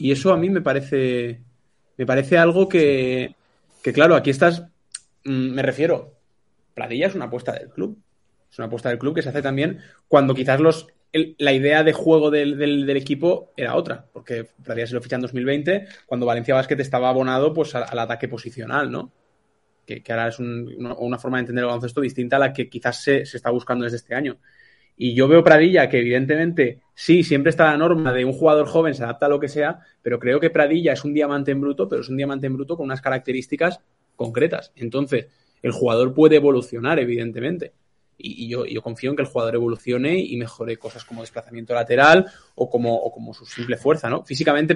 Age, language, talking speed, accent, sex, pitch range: 20-39, Spanish, 210 wpm, Spanish, male, 120-145 Hz